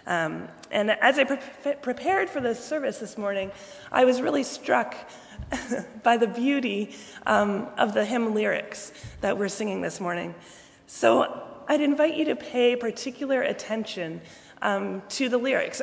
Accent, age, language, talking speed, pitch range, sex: American, 30-49, English, 150 wpm, 205-260 Hz, female